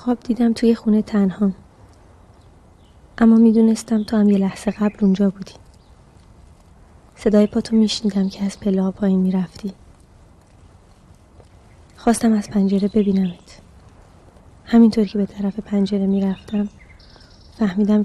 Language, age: Persian, 20-39